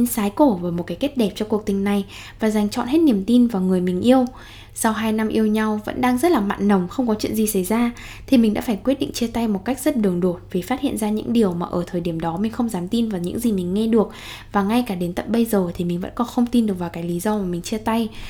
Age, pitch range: 10-29, 185-235 Hz